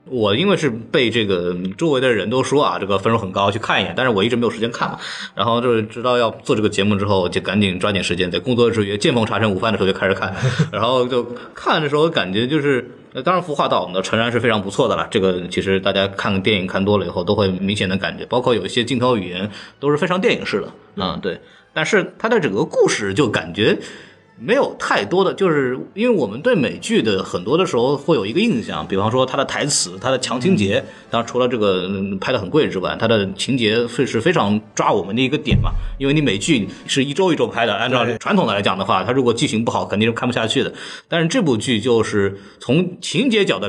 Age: 20-39